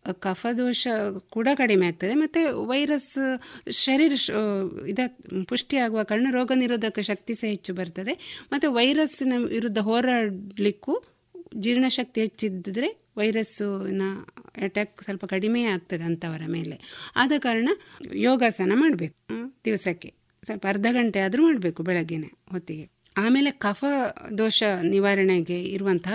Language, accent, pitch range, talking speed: Kannada, native, 185-260 Hz, 105 wpm